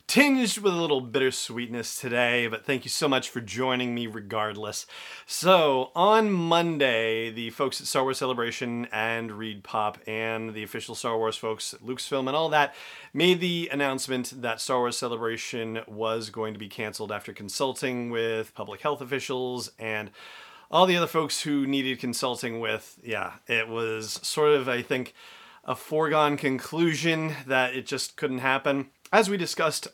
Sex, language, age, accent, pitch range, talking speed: male, English, 40-59, American, 115-145 Hz, 165 wpm